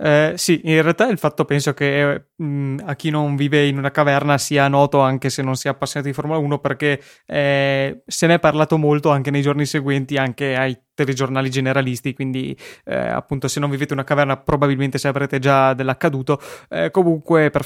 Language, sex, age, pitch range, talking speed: Italian, male, 20-39, 135-150 Hz, 200 wpm